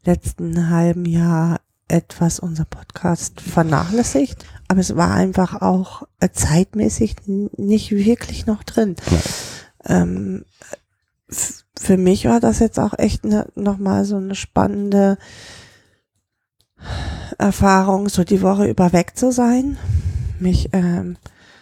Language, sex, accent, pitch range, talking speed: German, female, German, 175-205 Hz, 105 wpm